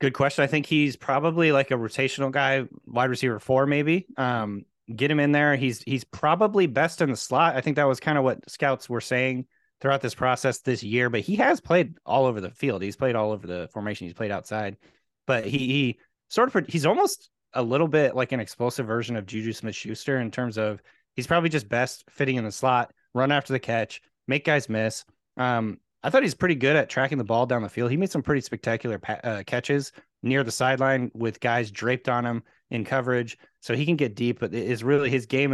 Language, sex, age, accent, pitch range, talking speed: English, male, 30-49, American, 110-135 Hz, 230 wpm